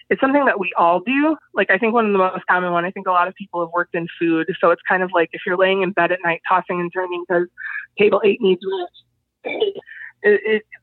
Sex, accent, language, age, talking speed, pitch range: female, American, English, 20-39, 260 wpm, 175-220 Hz